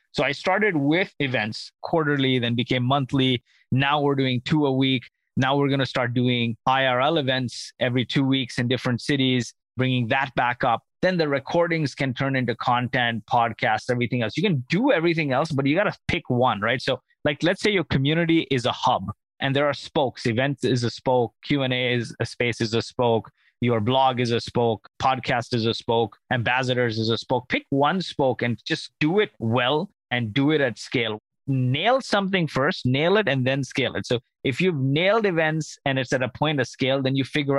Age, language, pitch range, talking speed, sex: 20-39, English, 120-145 Hz, 205 wpm, male